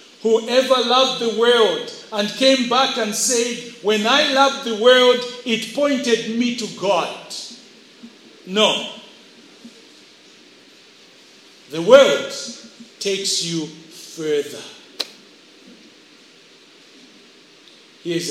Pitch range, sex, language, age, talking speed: 180-235 Hz, male, English, 50-69, 85 wpm